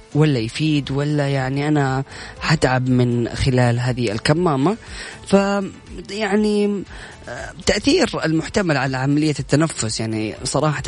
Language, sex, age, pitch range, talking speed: Arabic, female, 20-39, 125-160 Hz, 100 wpm